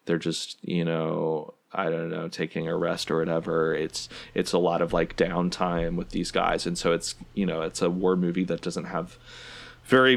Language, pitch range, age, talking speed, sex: English, 85-100 Hz, 20-39, 205 wpm, male